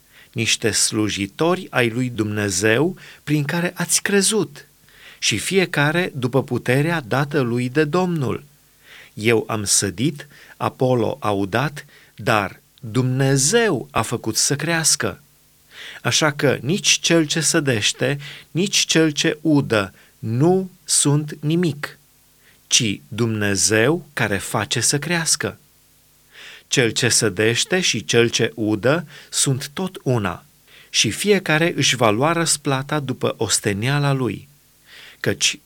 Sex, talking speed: male, 115 wpm